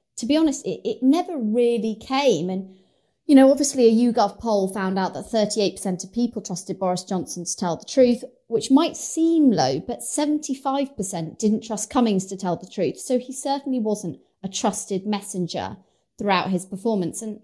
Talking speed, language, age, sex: 180 wpm, English, 30-49, female